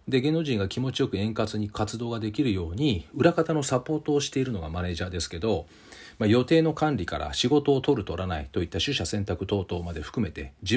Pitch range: 95-145 Hz